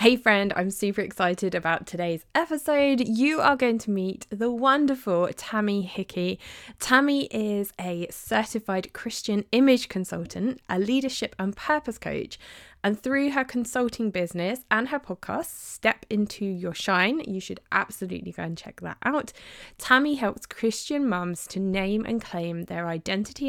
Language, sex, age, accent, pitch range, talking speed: English, female, 20-39, British, 185-235 Hz, 150 wpm